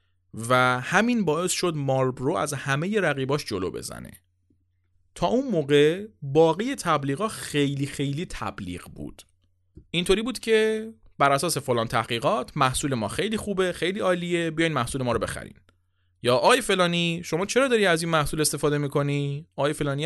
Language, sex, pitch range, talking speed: Persian, male, 105-170 Hz, 150 wpm